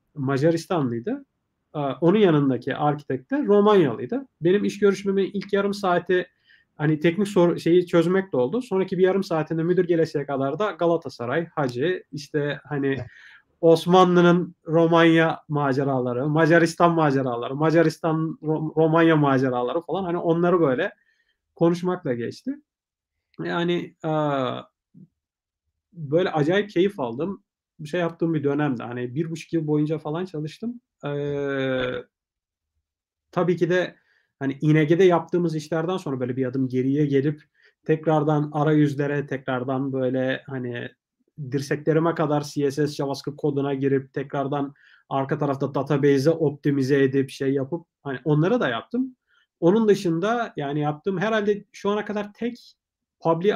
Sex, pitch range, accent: male, 140-175 Hz, native